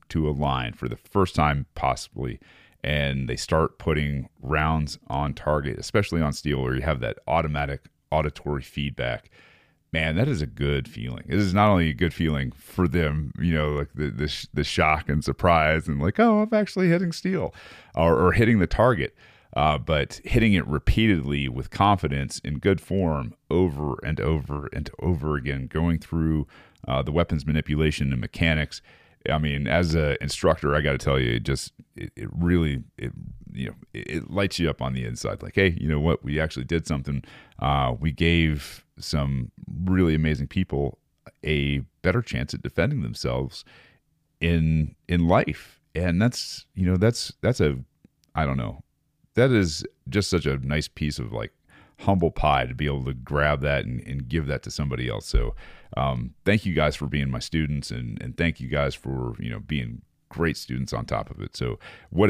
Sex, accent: male, American